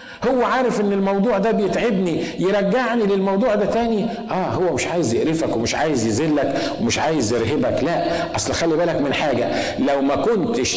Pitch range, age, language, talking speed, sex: 180-230 Hz, 50-69, Arabic, 165 wpm, male